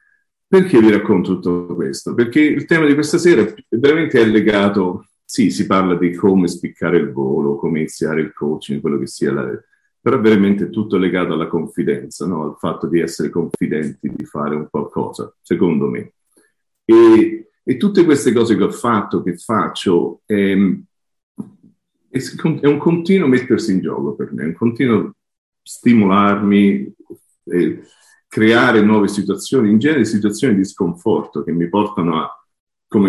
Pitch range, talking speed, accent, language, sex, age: 85-110 Hz, 160 wpm, native, Italian, male, 40-59